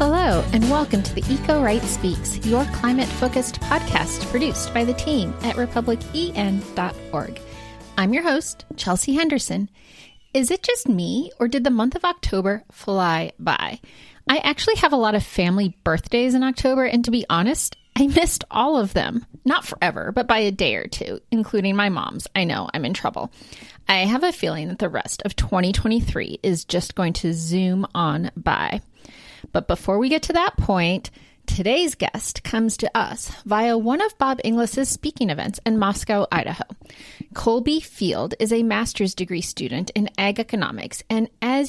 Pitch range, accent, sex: 200-275 Hz, American, female